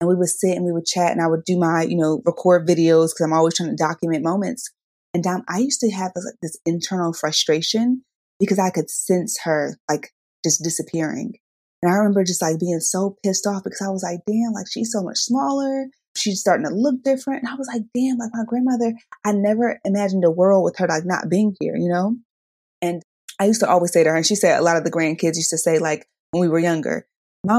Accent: American